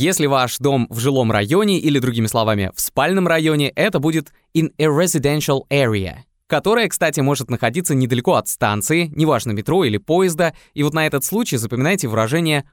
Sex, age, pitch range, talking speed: male, 20-39, 120-160 Hz, 170 wpm